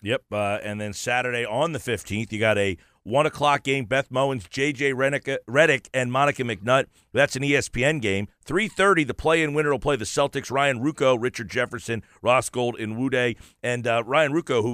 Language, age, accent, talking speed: English, 40-59, American, 190 wpm